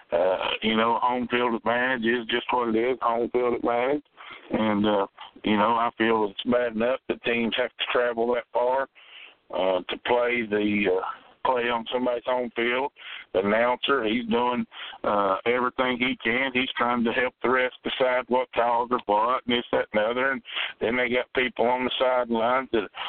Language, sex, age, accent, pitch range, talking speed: English, male, 50-69, American, 115-130 Hz, 190 wpm